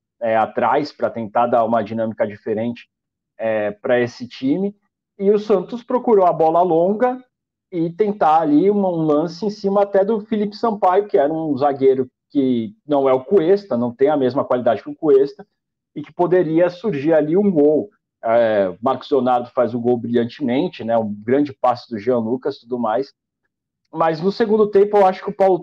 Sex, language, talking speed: male, Portuguese, 185 wpm